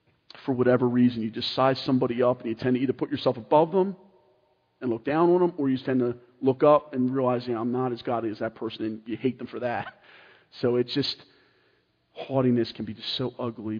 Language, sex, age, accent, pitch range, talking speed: English, male, 40-59, American, 110-130 Hz, 225 wpm